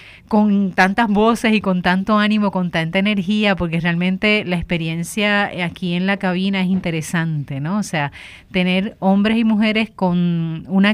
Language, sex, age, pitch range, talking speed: Spanish, female, 30-49, 175-210 Hz, 160 wpm